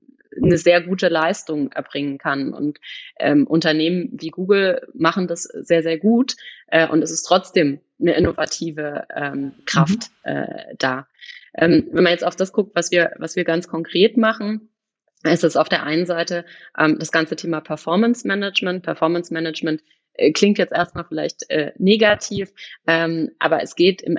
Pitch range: 160-195 Hz